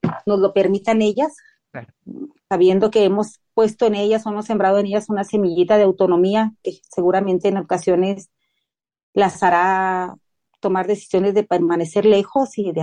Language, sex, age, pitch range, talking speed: Spanish, female, 40-59, 185-210 Hz, 150 wpm